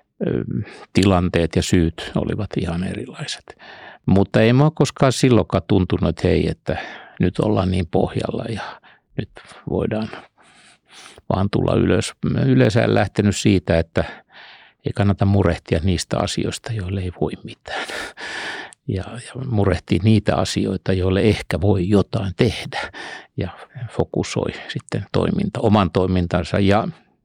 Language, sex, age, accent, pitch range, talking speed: Finnish, male, 60-79, native, 95-110 Hz, 120 wpm